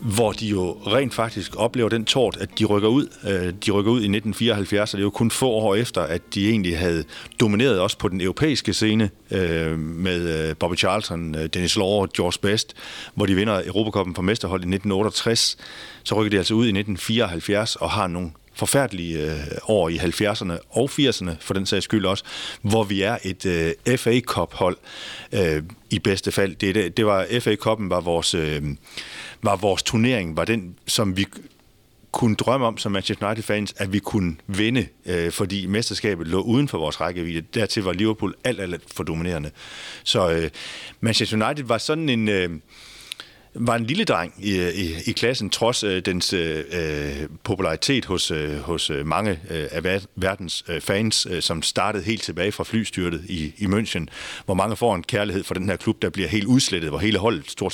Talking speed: 180 wpm